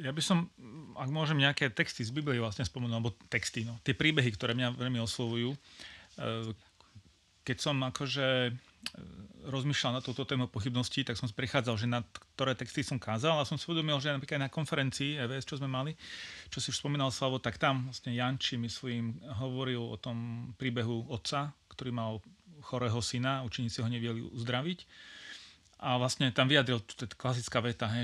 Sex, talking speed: male, 180 wpm